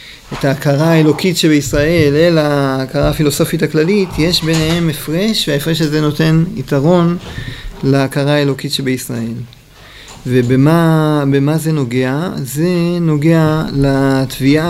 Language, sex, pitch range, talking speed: Hebrew, male, 130-160 Hz, 100 wpm